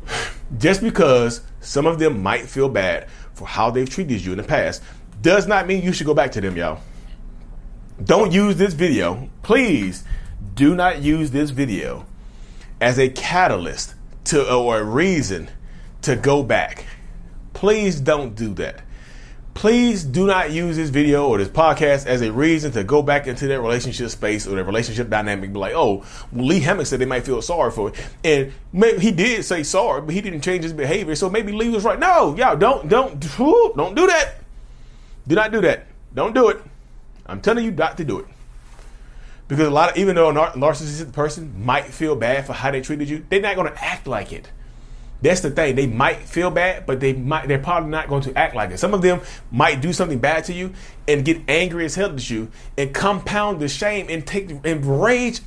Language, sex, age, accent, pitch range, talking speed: English, male, 30-49, American, 130-185 Hz, 205 wpm